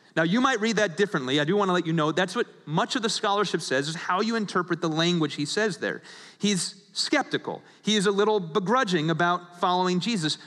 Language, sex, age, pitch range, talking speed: English, male, 30-49, 165-205 Hz, 225 wpm